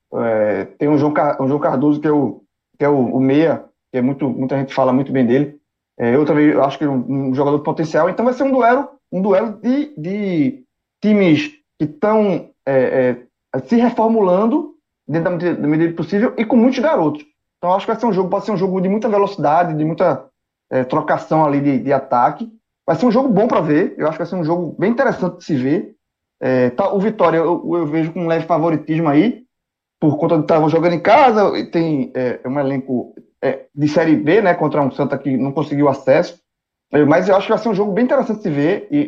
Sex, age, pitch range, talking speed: male, 20-39, 145-205 Hz, 235 wpm